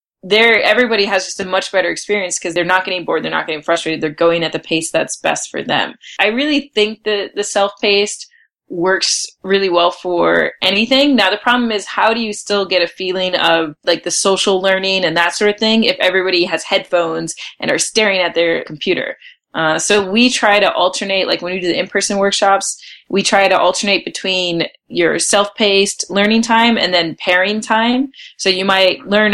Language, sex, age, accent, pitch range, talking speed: English, female, 20-39, American, 180-225 Hz, 200 wpm